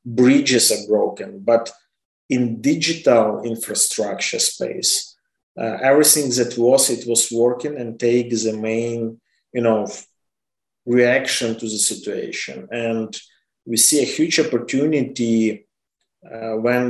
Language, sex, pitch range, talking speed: English, male, 115-130 Hz, 115 wpm